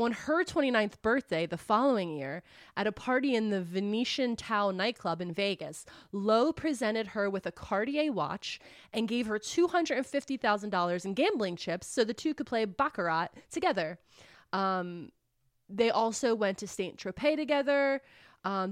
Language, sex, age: English, female, 20-39